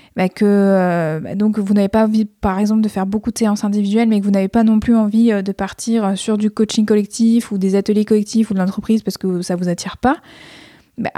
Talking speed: 240 wpm